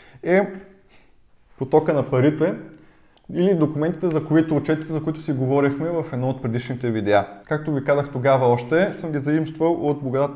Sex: male